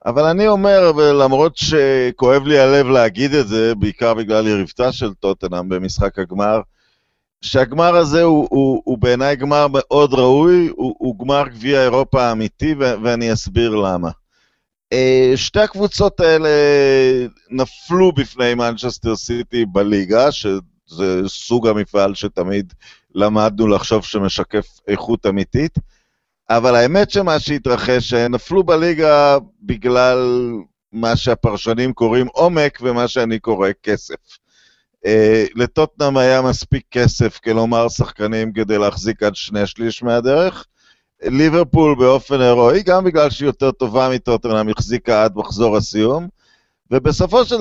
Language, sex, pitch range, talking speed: Hebrew, male, 110-140 Hz, 120 wpm